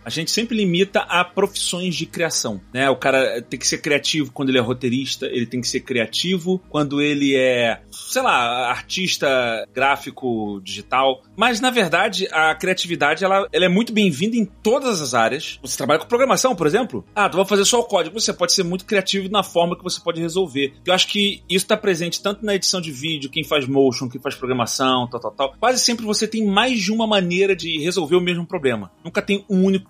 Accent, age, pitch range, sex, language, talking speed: Brazilian, 30-49, 135-190 Hz, male, Portuguese, 215 wpm